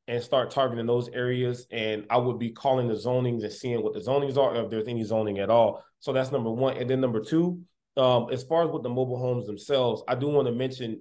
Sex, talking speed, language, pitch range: male, 250 wpm, English, 120-140 Hz